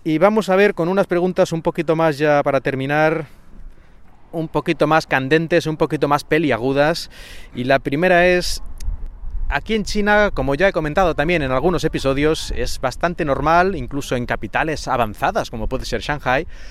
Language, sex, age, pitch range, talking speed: Spanish, male, 30-49, 115-165 Hz, 170 wpm